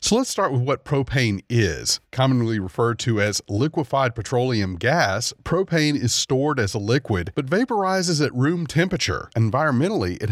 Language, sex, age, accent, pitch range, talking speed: English, male, 40-59, American, 110-150 Hz, 155 wpm